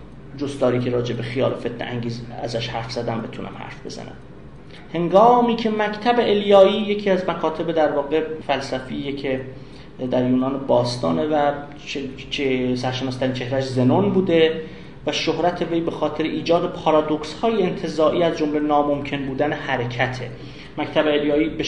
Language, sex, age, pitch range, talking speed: Persian, male, 30-49, 145-195 Hz, 140 wpm